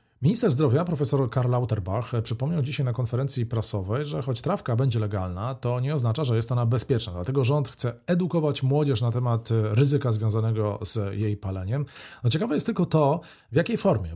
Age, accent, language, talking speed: 40-59, native, Polish, 180 wpm